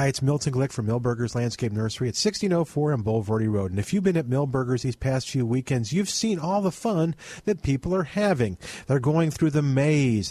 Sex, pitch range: male, 125-180 Hz